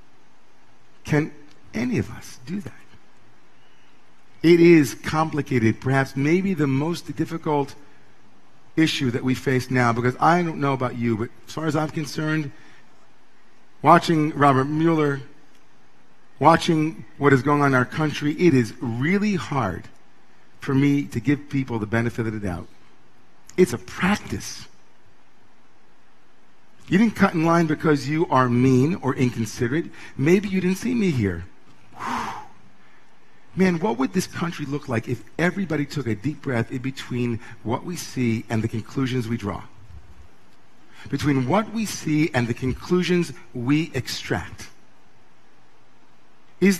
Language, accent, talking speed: English, American, 140 wpm